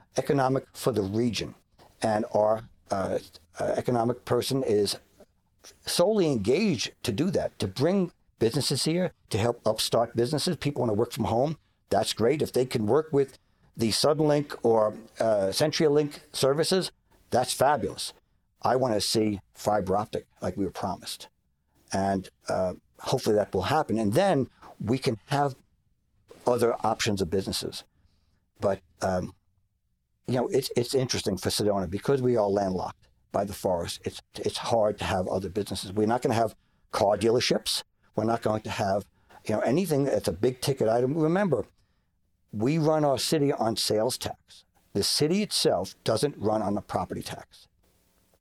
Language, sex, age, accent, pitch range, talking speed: English, male, 60-79, American, 100-135 Hz, 160 wpm